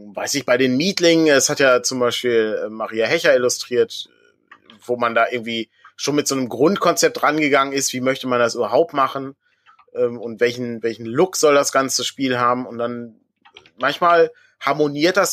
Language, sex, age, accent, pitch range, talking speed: German, male, 30-49, German, 120-170 Hz, 170 wpm